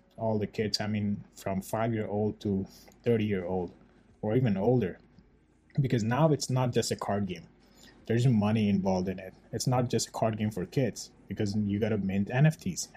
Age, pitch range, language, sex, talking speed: 20-39, 100-125 Hz, English, male, 180 wpm